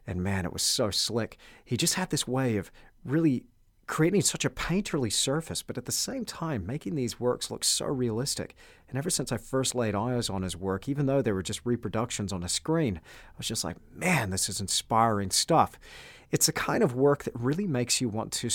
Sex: male